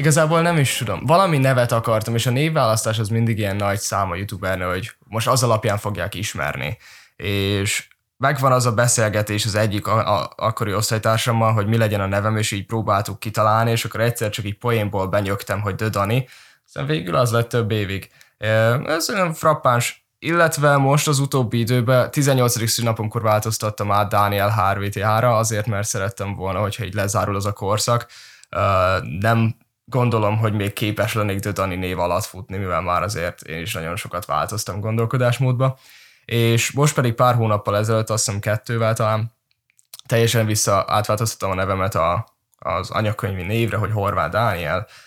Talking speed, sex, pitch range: 160 wpm, male, 100-120 Hz